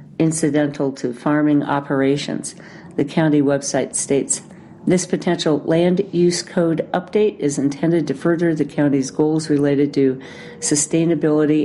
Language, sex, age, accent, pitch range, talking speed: English, female, 50-69, American, 140-165 Hz, 125 wpm